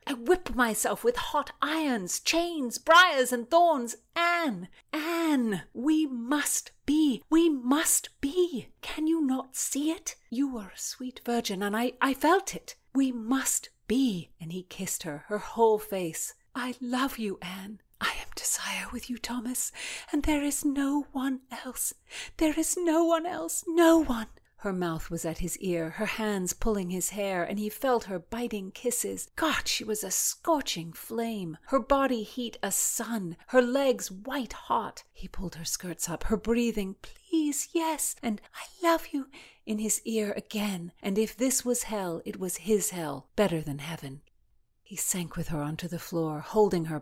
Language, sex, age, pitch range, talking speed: English, female, 40-59, 195-290 Hz, 175 wpm